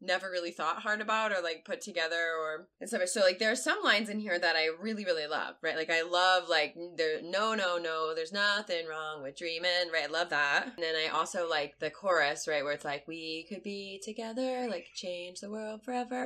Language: English